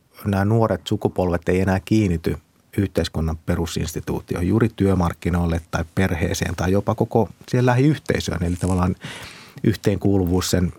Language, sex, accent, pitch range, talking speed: Finnish, male, native, 85-110 Hz, 115 wpm